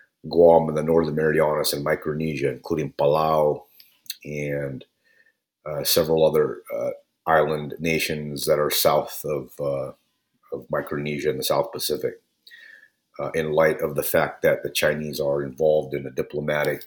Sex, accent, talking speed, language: male, American, 145 wpm, English